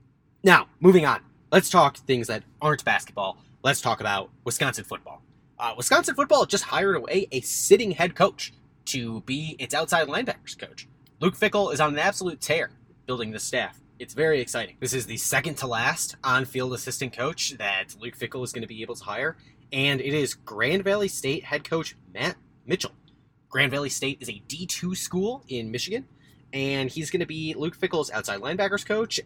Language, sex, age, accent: English, male, 20-39, American